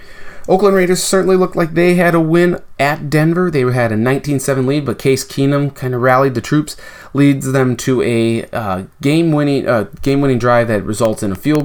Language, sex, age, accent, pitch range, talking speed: English, male, 30-49, American, 110-140 Hz, 195 wpm